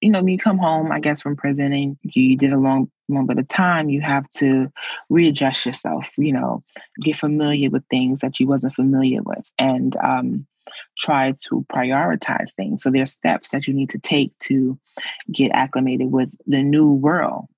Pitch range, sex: 135-150 Hz, female